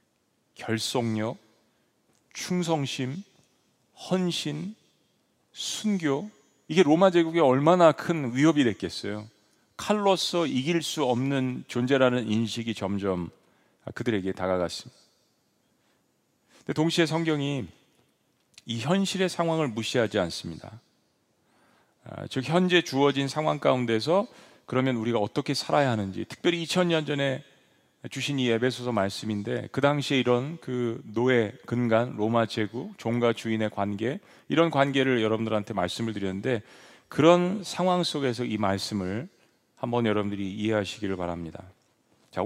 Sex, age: male, 40-59